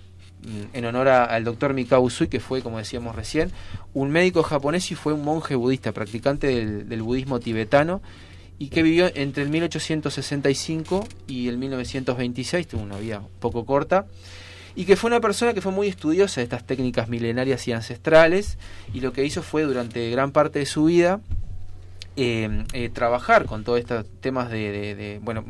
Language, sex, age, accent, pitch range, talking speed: Spanish, male, 20-39, Argentinian, 105-135 Hz, 175 wpm